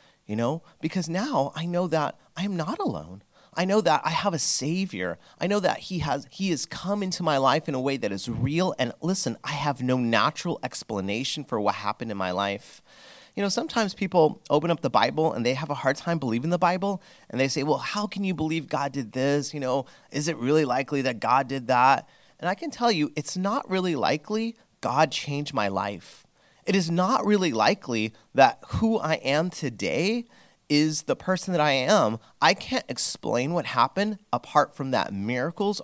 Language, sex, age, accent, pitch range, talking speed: English, male, 30-49, American, 135-195 Hz, 205 wpm